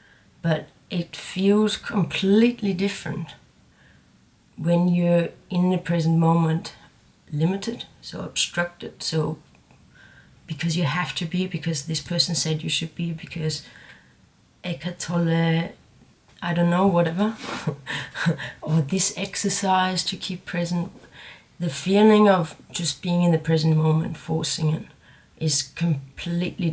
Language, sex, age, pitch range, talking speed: English, female, 30-49, 160-180 Hz, 115 wpm